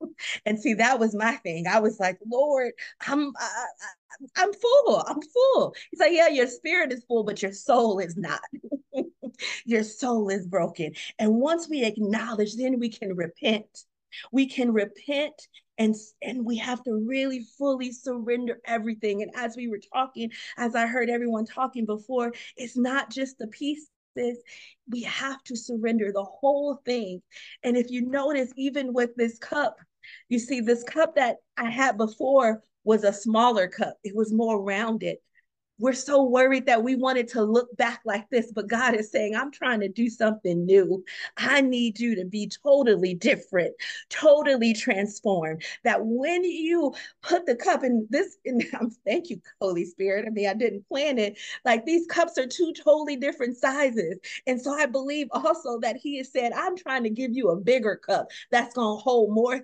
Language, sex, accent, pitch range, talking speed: English, female, American, 220-275 Hz, 180 wpm